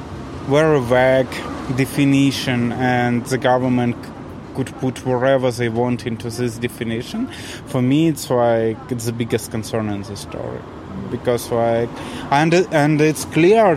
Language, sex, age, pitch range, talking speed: English, male, 20-39, 120-145 Hz, 135 wpm